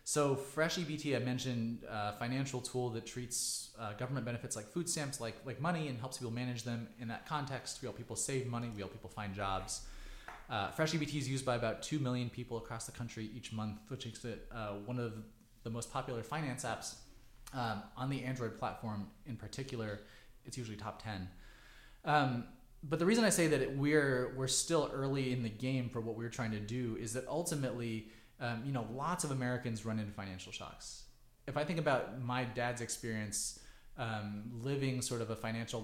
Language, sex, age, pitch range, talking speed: English, male, 20-39, 110-130 Hz, 205 wpm